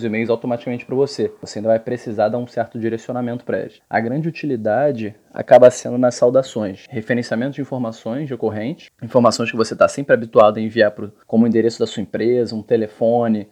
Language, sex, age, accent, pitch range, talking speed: Portuguese, male, 20-39, Brazilian, 115-130 Hz, 195 wpm